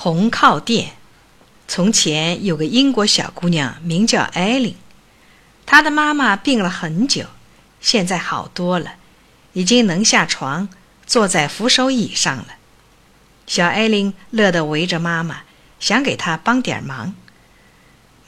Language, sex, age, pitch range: Chinese, female, 50-69, 170-255 Hz